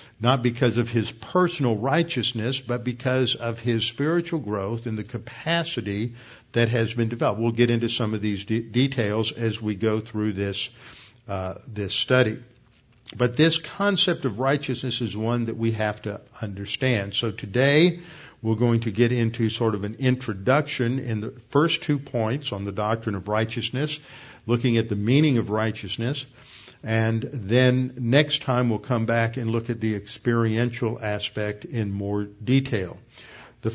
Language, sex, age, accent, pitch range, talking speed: English, male, 50-69, American, 110-130 Hz, 160 wpm